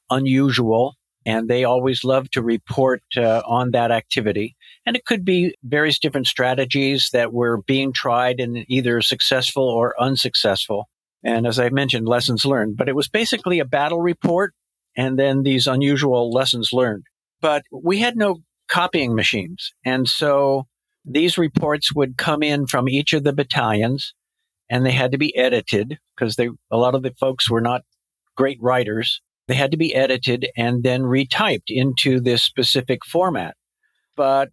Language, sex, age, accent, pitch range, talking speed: English, male, 50-69, American, 125-145 Hz, 165 wpm